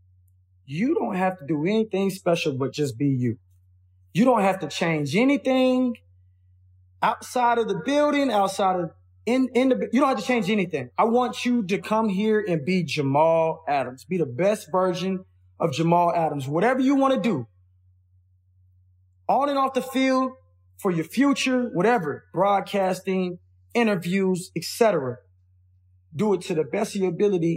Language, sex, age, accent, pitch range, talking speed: English, male, 20-39, American, 145-210 Hz, 160 wpm